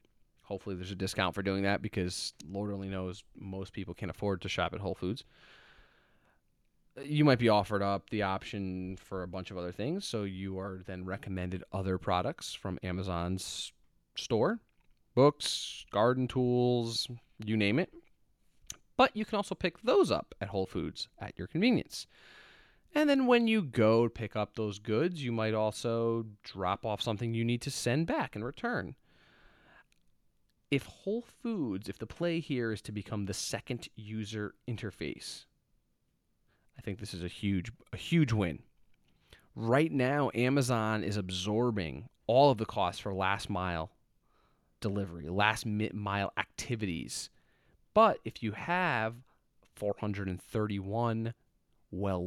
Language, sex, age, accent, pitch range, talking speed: English, male, 20-39, American, 95-125 Hz, 150 wpm